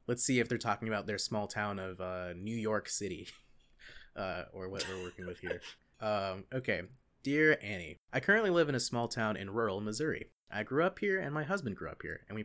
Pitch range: 100-135 Hz